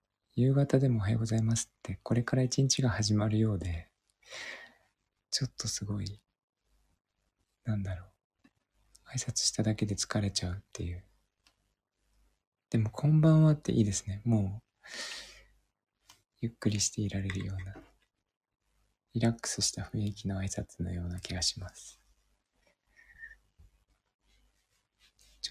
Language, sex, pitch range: Japanese, male, 100-120 Hz